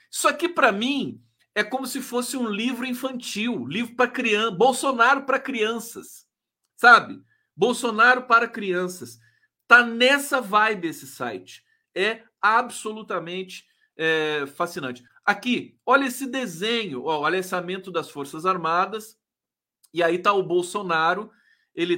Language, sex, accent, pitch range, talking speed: Portuguese, male, Brazilian, 170-245 Hz, 125 wpm